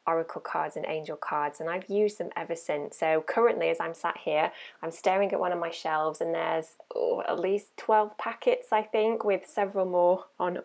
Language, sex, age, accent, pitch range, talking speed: English, female, 20-39, British, 165-215 Hz, 205 wpm